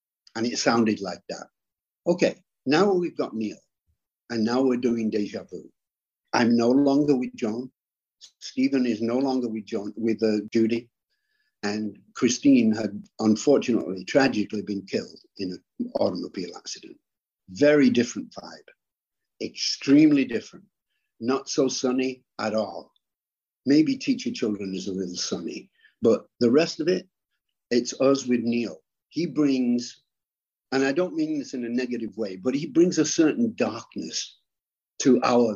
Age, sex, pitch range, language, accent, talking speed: 60-79, male, 110-165 Hz, English, British, 145 wpm